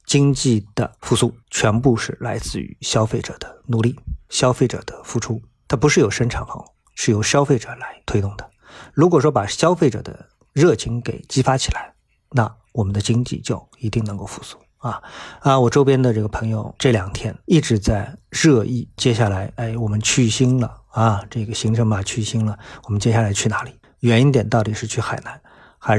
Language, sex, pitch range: Chinese, male, 110-130 Hz